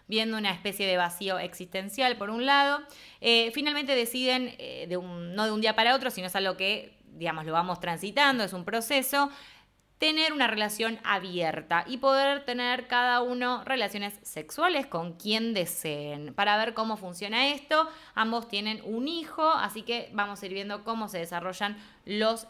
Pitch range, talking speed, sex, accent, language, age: 190-245 Hz, 170 wpm, female, Argentinian, English, 20-39